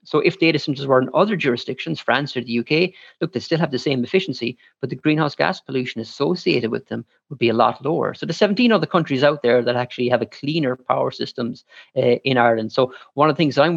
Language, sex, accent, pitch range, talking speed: English, male, Irish, 120-145 Hz, 240 wpm